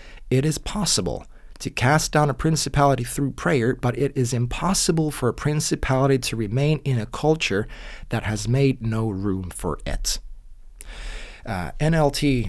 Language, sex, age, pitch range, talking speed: Finnish, male, 20-39, 105-140 Hz, 150 wpm